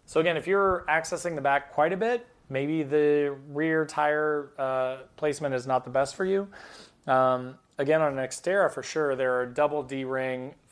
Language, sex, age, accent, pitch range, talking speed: English, male, 20-39, American, 125-145 Hz, 185 wpm